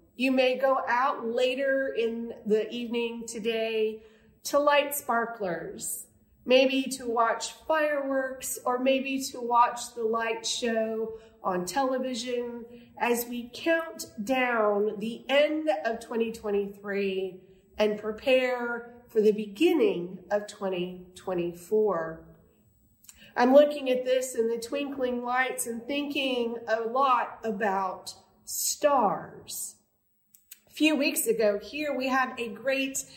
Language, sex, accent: English, female, American